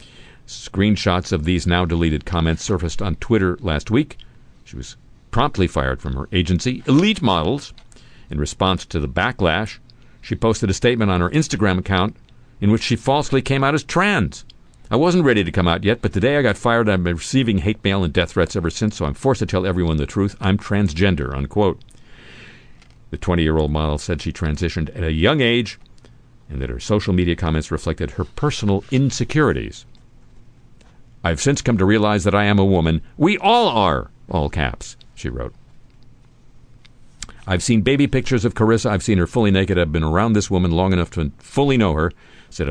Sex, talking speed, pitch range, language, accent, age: male, 185 wpm, 85-120 Hz, English, American, 50-69